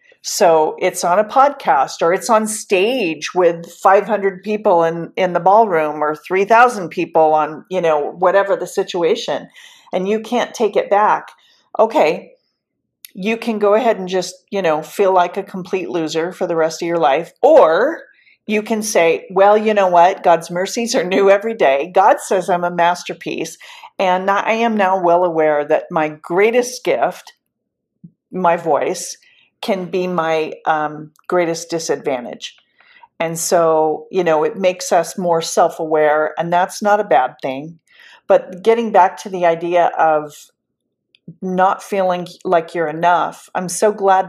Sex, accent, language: female, American, English